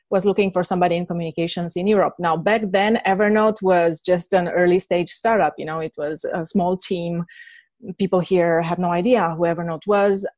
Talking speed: 185 wpm